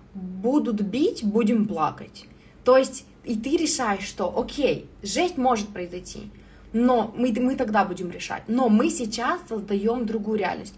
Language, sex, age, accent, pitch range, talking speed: Russian, female, 20-39, native, 185-235 Hz, 145 wpm